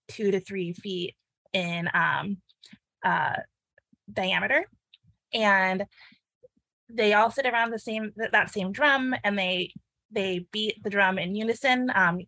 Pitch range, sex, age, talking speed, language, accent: 175-210 Hz, female, 20-39, 130 wpm, English, American